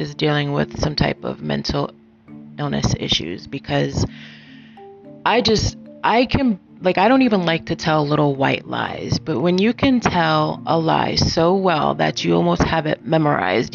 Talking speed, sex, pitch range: 170 wpm, female, 135-170 Hz